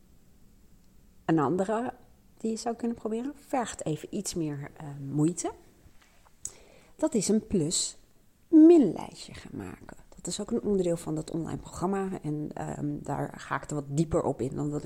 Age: 40-59